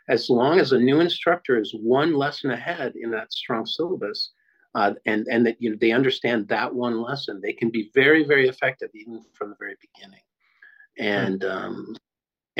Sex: male